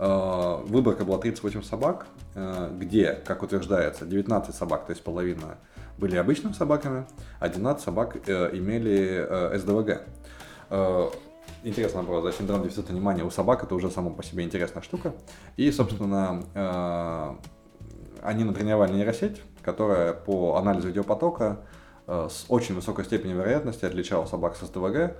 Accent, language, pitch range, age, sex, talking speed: native, Russian, 90-105 Hz, 20-39, male, 120 wpm